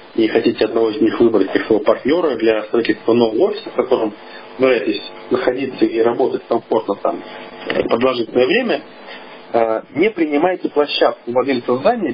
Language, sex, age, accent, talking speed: Russian, male, 40-59, native, 145 wpm